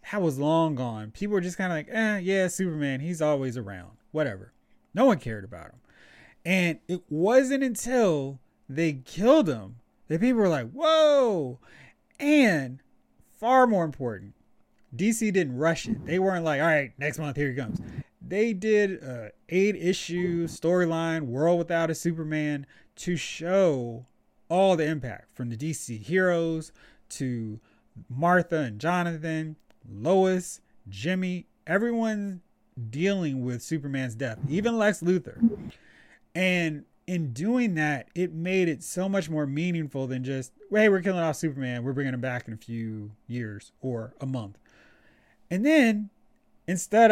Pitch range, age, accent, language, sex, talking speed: 135-185 Hz, 30-49, American, English, male, 150 wpm